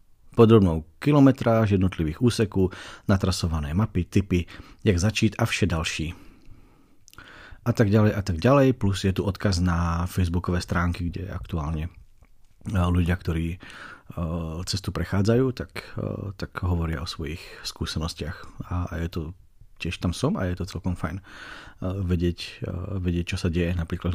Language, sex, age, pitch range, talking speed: Slovak, male, 40-59, 90-105 Hz, 145 wpm